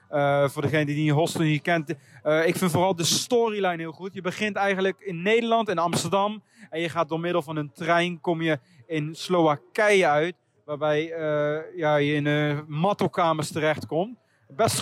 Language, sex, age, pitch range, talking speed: Dutch, male, 30-49, 160-200 Hz, 185 wpm